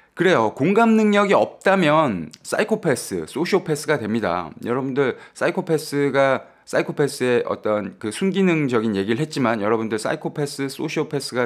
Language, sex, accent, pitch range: Korean, male, native, 105-160 Hz